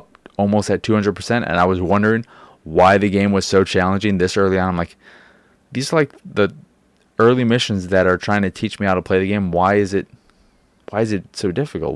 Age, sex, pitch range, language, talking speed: 20-39, male, 90-100 Hz, English, 215 wpm